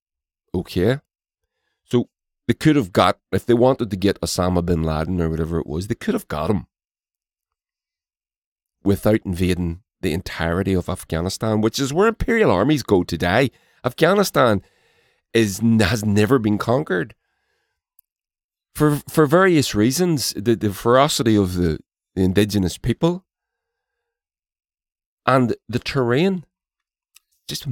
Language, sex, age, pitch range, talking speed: English, male, 40-59, 90-125 Hz, 125 wpm